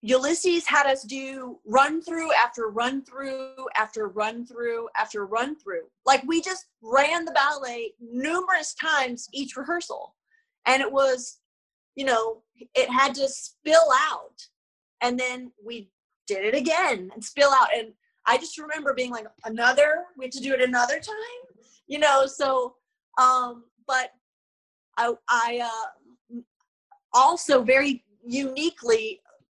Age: 30-49